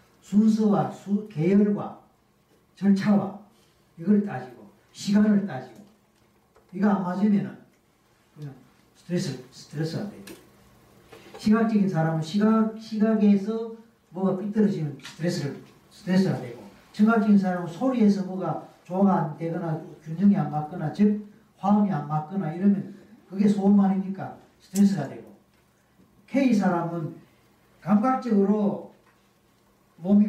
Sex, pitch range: male, 170-210 Hz